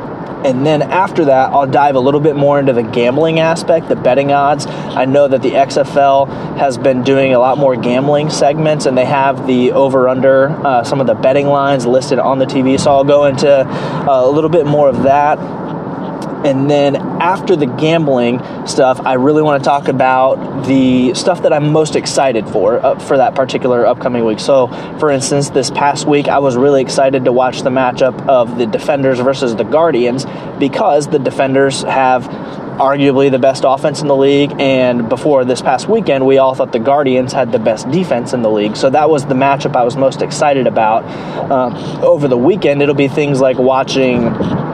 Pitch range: 130-155 Hz